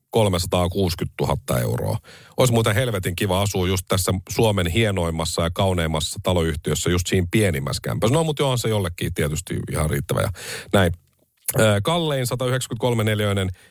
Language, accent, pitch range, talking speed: Finnish, native, 90-125 Hz, 135 wpm